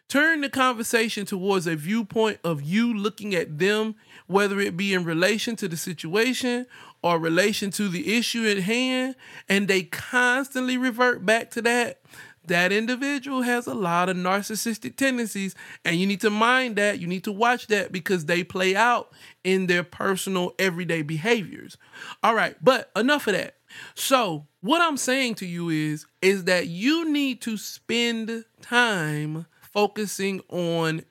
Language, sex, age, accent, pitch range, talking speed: English, male, 30-49, American, 175-235 Hz, 160 wpm